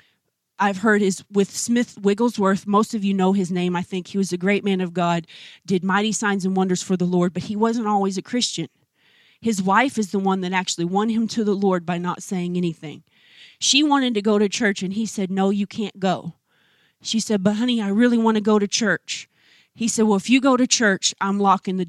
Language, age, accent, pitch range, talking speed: English, 30-49, American, 185-220 Hz, 235 wpm